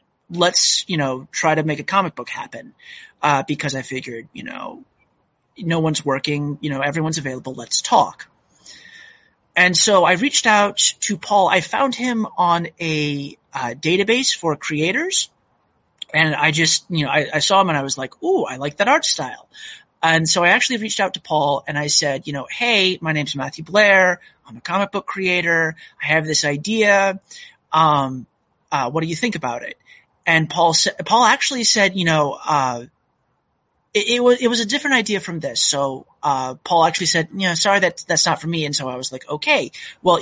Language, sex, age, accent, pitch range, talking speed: English, male, 30-49, American, 150-205 Hz, 200 wpm